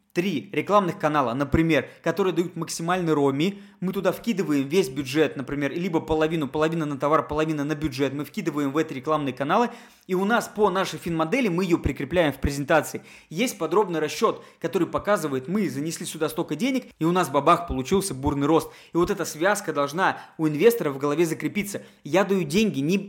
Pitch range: 150-195 Hz